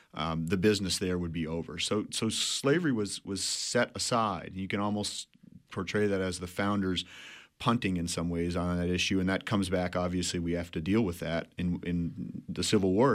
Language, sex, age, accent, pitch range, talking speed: English, male, 40-59, American, 90-115 Hz, 205 wpm